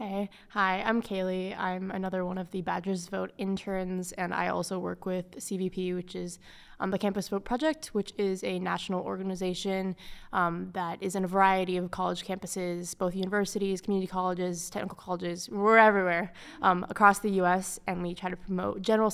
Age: 20-39